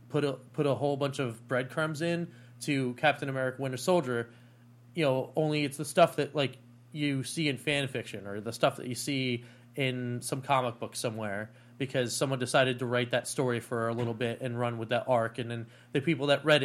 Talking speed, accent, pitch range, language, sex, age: 215 wpm, American, 120-145 Hz, English, male, 30-49